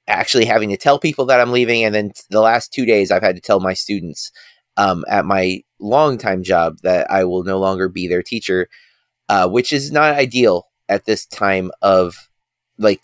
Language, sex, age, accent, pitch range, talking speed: English, male, 30-49, American, 100-130 Hz, 200 wpm